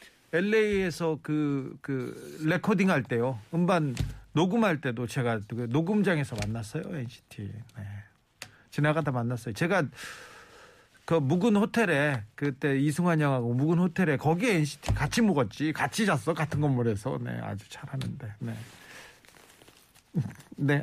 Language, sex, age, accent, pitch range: Korean, male, 40-59, native, 130-170 Hz